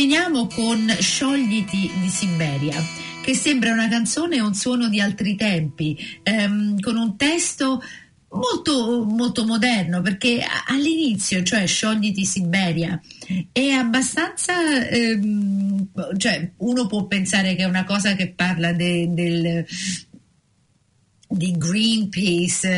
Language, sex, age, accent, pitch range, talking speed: Italian, female, 50-69, native, 180-235 Hz, 110 wpm